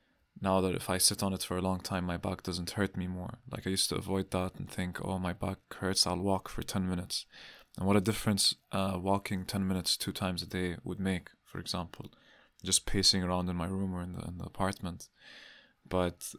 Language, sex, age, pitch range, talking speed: English, male, 20-39, 90-100 Hz, 230 wpm